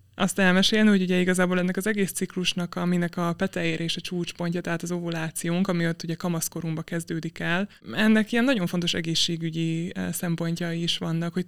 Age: 20-39